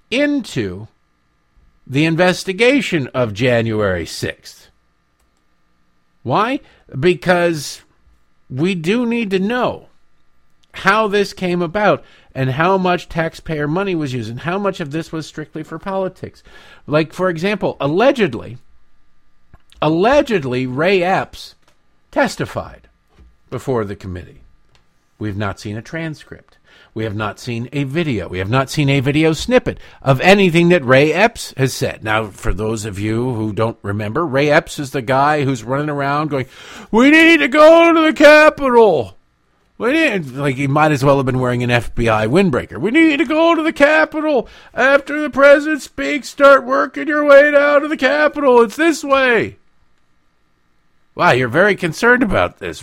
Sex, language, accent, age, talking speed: male, English, American, 50-69, 150 wpm